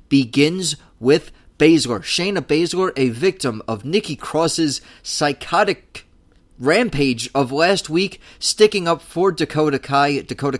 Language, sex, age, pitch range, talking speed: English, male, 30-49, 120-155 Hz, 120 wpm